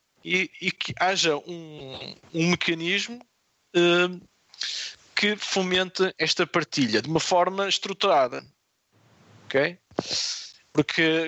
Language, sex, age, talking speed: Portuguese, male, 20-39, 95 wpm